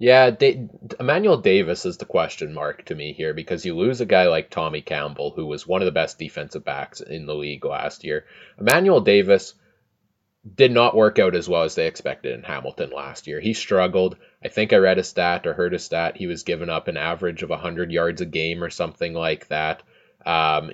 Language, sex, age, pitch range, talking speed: English, male, 20-39, 85-120 Hz, 215 wpm